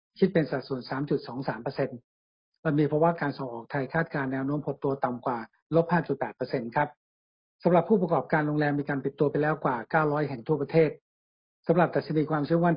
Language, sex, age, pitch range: Thai, male, 60-79, 140-165 Hz